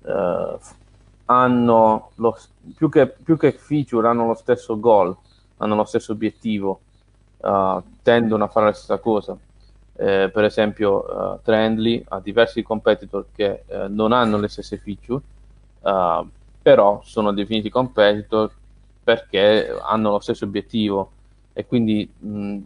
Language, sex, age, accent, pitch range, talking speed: Italian, male, 20-39, native, 105-115 Hz, 135 wpm